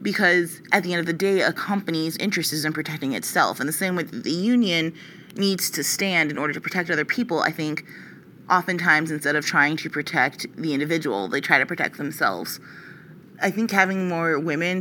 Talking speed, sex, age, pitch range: 205 wpm, female, 30-49, 150-175 Hz